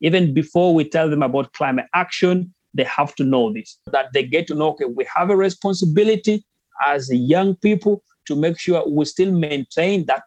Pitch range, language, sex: 140-185 Hz, English, male